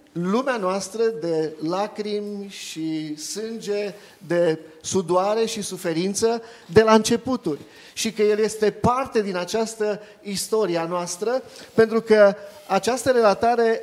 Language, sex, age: Romanian, male, 30-49